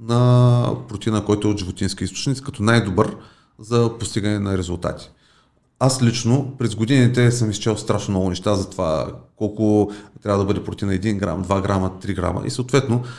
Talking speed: 170 wpm